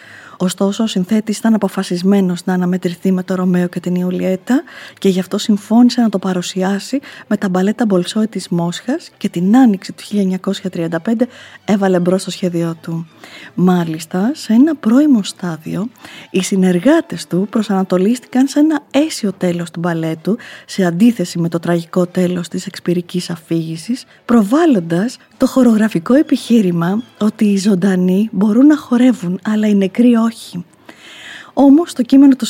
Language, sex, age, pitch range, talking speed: Greek, female, 20-39, 185-230 Hz, 145 wpm